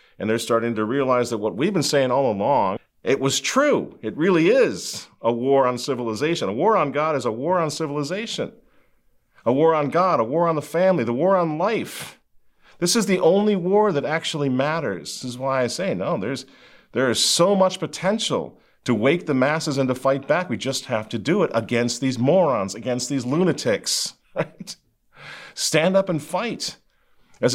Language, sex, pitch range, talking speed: English, male, 150-195 Hz, 200 wpm